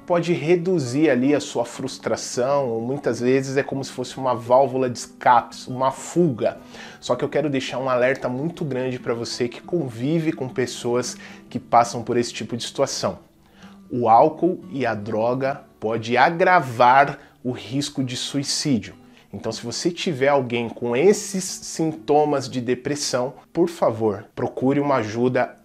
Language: Portuguese